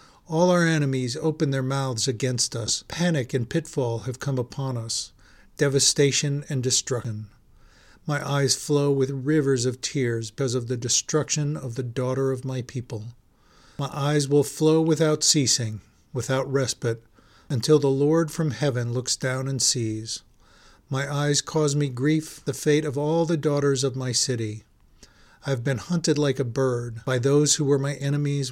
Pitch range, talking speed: 120-145 Hz, 165 wpm